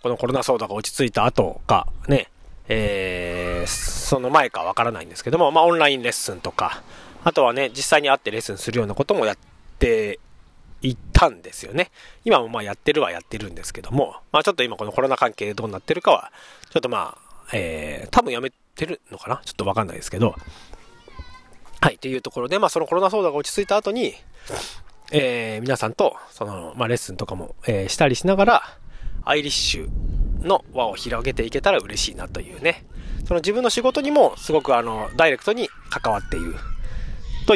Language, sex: Japanese, male